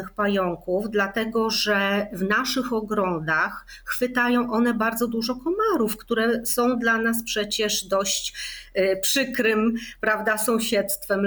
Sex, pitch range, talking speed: female, 190-235 Hz, 110 wpm